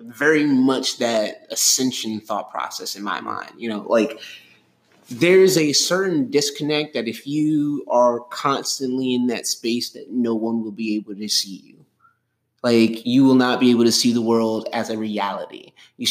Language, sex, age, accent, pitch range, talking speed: English, male, 20-39, American, 110-140 Hz, 175 wpm